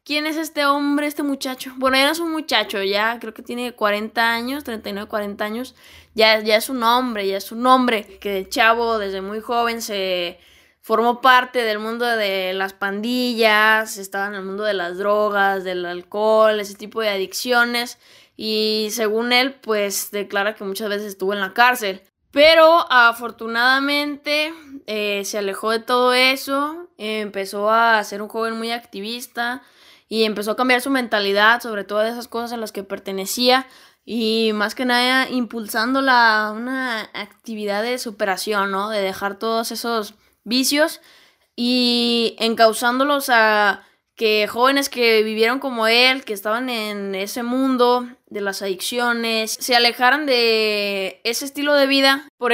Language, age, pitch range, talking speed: Spanish, 10-29, 210-255 Hz, 160 wpm